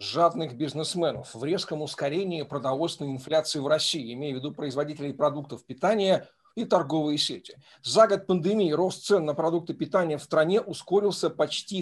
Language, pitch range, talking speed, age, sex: Russian, 150-185 Hz, 150 wpm, 50-69, male